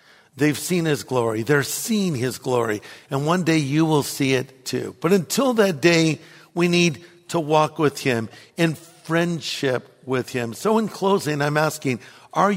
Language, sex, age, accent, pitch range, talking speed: English, male, 60-79, American, 150-190 Hz, 170 wpm